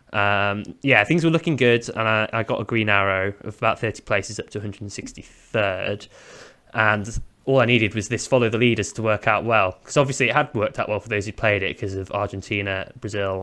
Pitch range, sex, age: 105-130 Hz, male, 20-39